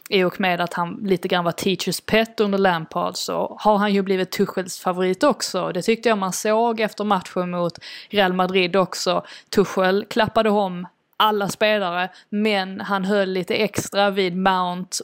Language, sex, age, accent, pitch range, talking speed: Swedish, female, 20-39, native, 180-210 Hz, 170 wpm